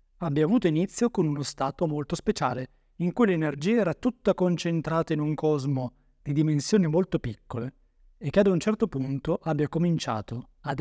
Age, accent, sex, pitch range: 30-49, native, male, 130-195 Hz